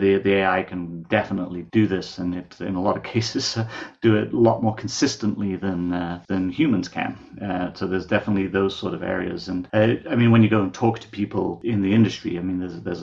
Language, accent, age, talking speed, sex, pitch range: English, British, 40-59, 235 wpm, male, 90-105 Hz